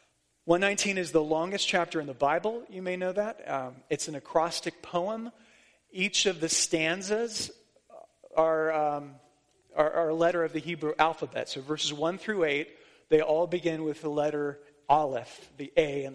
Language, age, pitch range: English, 30-49, 140-175 Hz